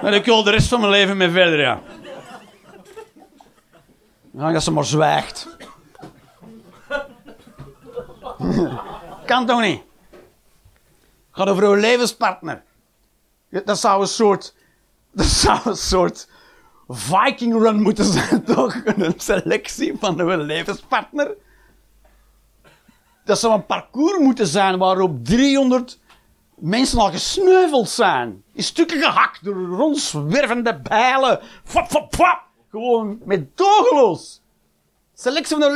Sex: male